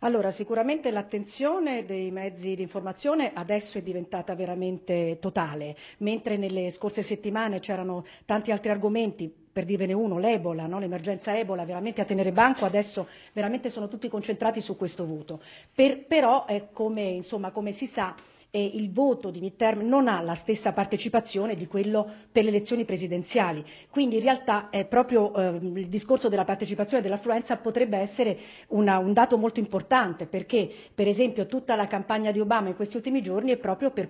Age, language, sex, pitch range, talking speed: 50-69, Italian, female, 190-230 Hz, 170 wpm